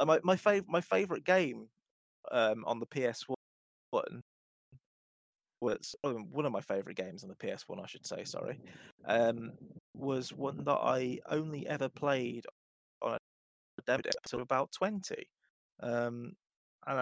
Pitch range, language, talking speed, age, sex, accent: 115-150 Hz, English, 150 wpm, 20-39, male, British